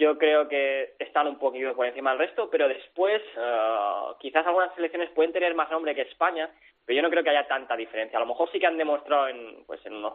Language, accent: Spanish, Spanish